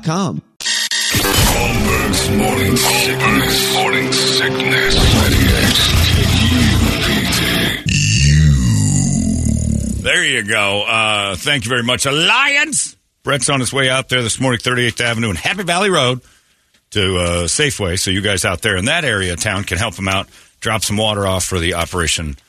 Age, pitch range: 50-69, 90-130 Hz